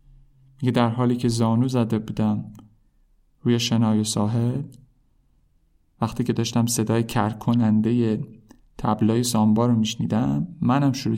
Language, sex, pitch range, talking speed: Persian, male, 110-135 Hz, 115 wpm